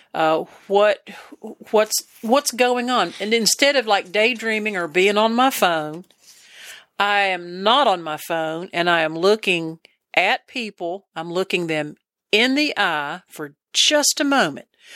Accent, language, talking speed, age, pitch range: American, English, 150 wpm, 50-69, 175-230 Hz